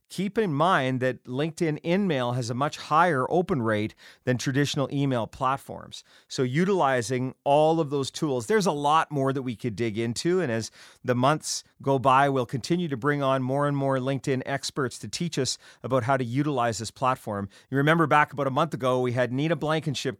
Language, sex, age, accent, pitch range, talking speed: English, male, 40-59, American, 125-170 Hz, 200 wpm